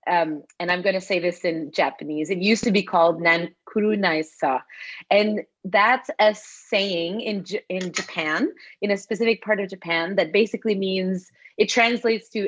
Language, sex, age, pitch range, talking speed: English, female, 30-49, 175-215 Hz, 170 wpm